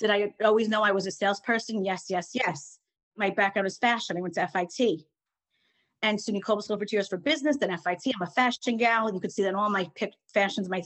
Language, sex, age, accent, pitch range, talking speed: English, female, 30-49, American, 185-225 Hz, 225 wpm